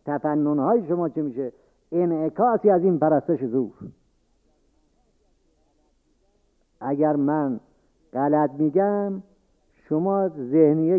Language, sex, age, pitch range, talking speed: Persian, male, 50-69, 135-170 Hz, 85 wpm